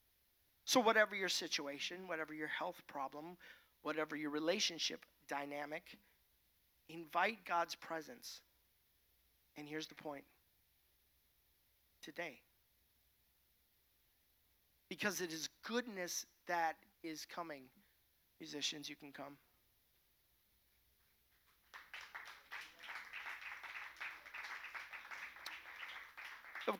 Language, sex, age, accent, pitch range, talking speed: English, male, 50-69, American, 140-200 Hz, 70 wpm